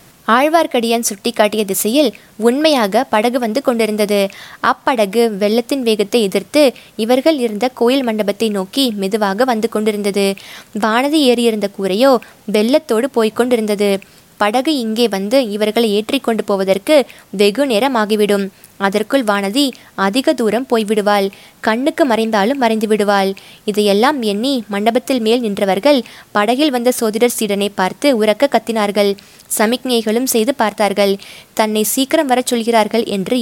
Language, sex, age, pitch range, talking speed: Tamil, female, 20-39, 200-235 Hz, 115 wpm